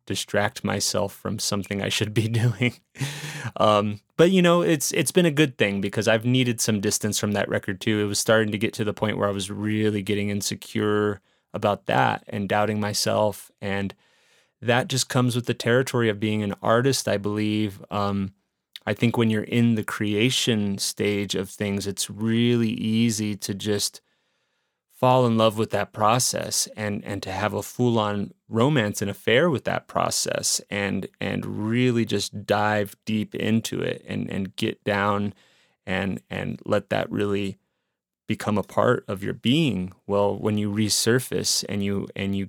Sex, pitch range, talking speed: male, 100-115 Hz, 175 wpm